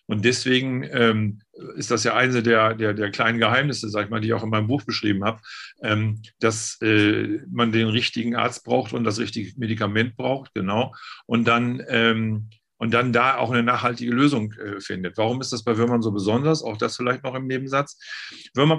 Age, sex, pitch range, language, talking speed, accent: 40-59, male, 110-135 Hz, German, 190 wpm, German